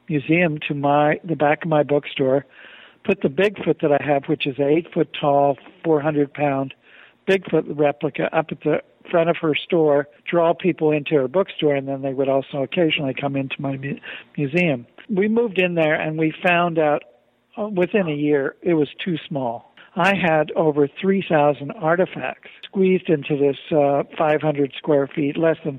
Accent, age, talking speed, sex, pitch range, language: American, 60-79, 170 wpm, male, 145-170 Hz, English